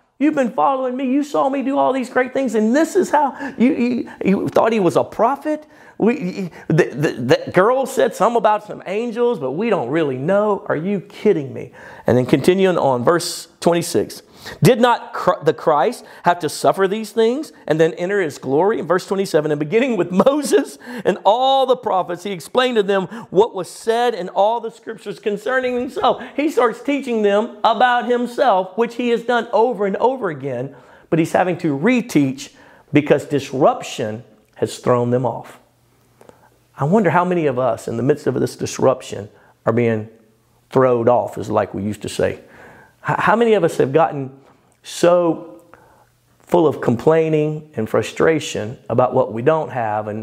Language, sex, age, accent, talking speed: English, male, 50-69, American, 185 wpm